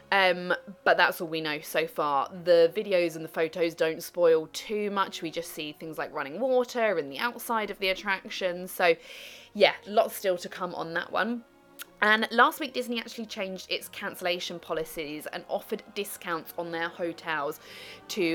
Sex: female